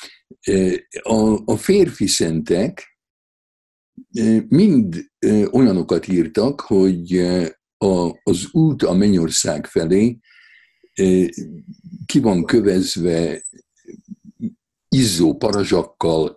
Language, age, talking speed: Hungarian, 60-79, 60 wpm